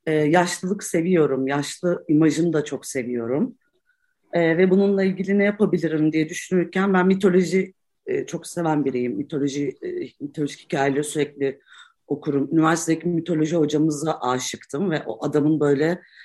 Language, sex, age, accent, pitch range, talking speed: Turkish, female, 40-59, native, 150-195 Hz, 135 wpm